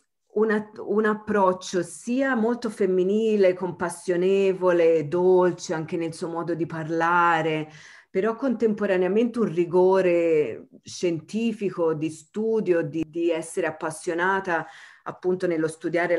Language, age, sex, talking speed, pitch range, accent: Italian, 40-59, female, 105 wpm, 150-180 Hz, native